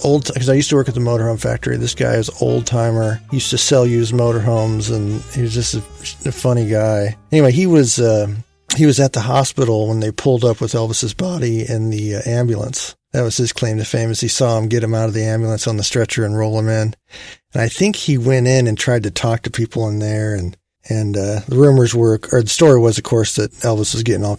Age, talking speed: 40-59, 250 wpm